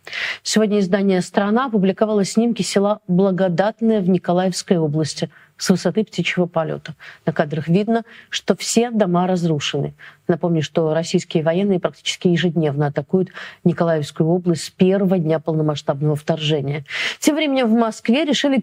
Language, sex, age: Russian, female, 40-59